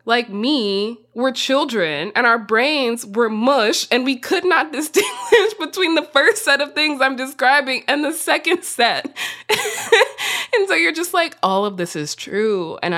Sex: female